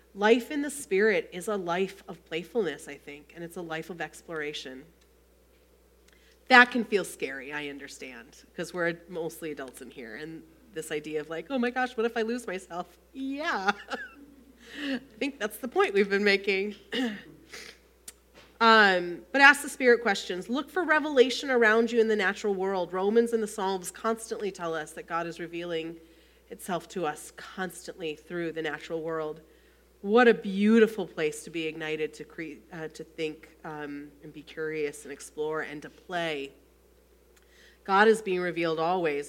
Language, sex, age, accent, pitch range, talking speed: English, female, 30-49, American, 160-235 Hz, 170 wpm